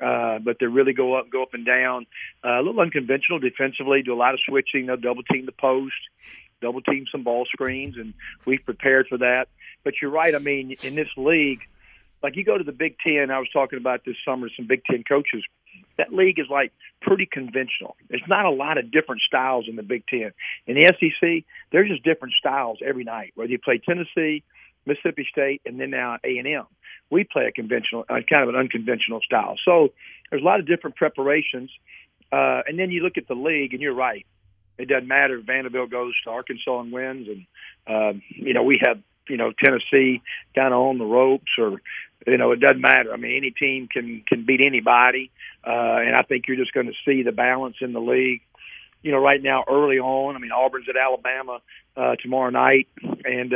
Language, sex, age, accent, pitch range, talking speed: English, male, 50-69, American, 125-140 Hz, 215 wpm